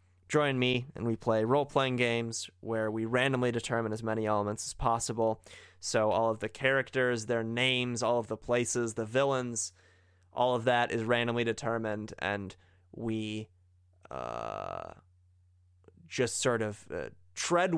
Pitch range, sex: 105-125 Hz, male